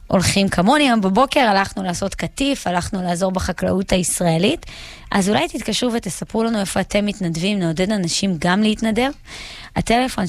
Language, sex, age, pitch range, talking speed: Hebrew, female, 20-39, 180-220 Hz, 140 wpm